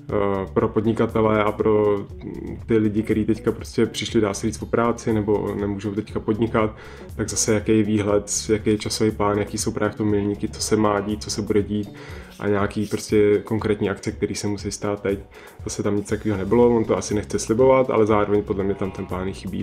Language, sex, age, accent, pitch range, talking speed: Czech, male, 20-39, native, 100-110 Hz, 205 wpm